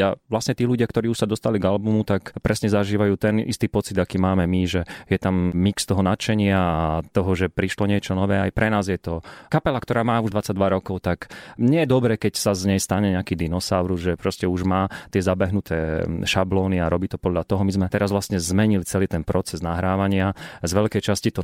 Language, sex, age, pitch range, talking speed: Slovak, male, 30-49, 90-105 Hz, 220 wpm